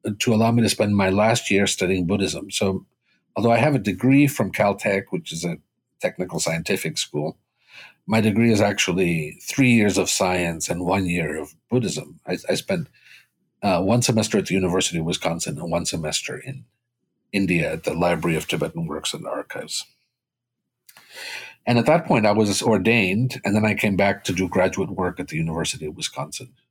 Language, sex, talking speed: English, male, 185 wpm